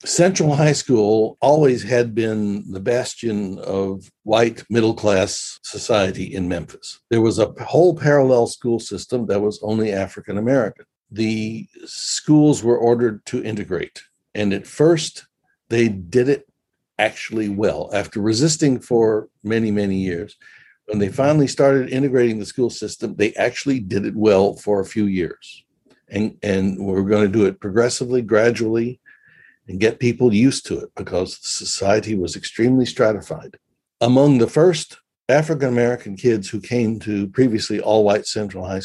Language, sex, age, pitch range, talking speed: English, male, 60-79, 105-125 Hz, 145 wpm